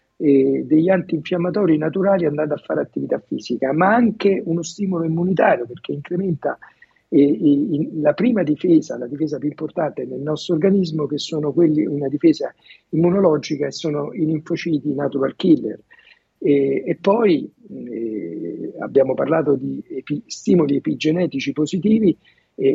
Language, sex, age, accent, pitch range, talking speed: Italian, male, 50-69, native, 150-185 Hz, 135 wpm